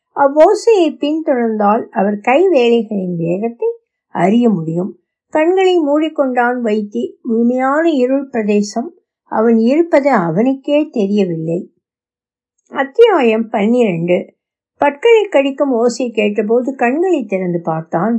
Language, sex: Tamil, female